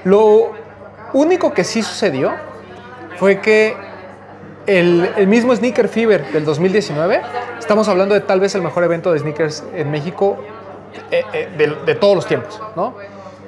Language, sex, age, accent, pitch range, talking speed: Spanish, male, 30-49, Mexican, 175-220 Hz, 145 wpm